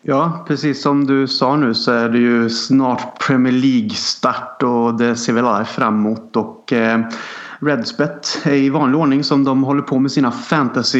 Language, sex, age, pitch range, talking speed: Swedish, male, 30-49, 115-140 Hz, 170 wpm